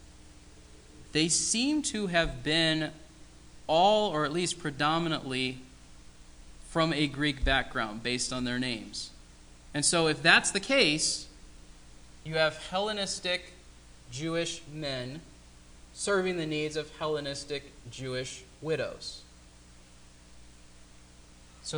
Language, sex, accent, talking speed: English, male, American, 100 wpm